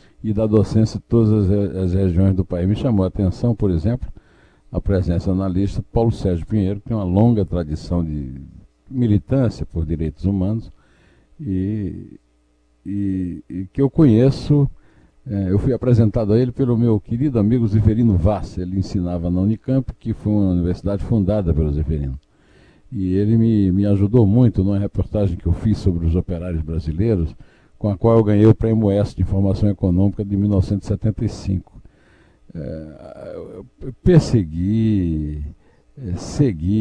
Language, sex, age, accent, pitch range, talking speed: Portuguese, male, 60-79, Brazilian, 90-115 Hz, 155 wpm